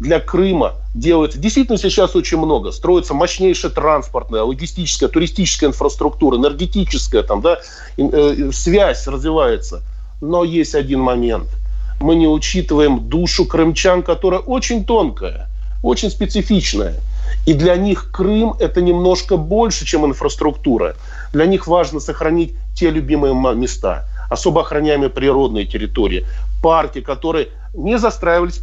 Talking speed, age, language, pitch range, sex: 120 wpm, 40-59, Russian, 145-185 Hz, male